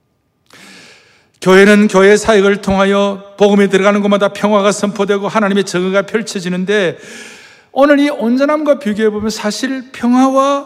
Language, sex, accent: Korean, male, native